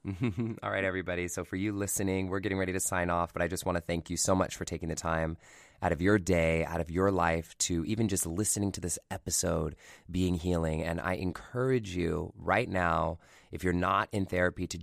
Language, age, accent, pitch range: English, 20-39, American, 85-100 Hz